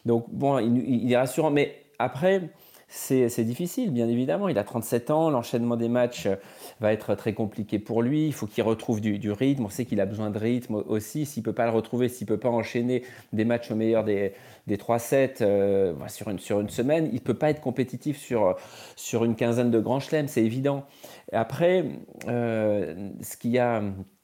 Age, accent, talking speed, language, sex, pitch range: 30-49, French, 215 wpm, French, male, 110-135 Hz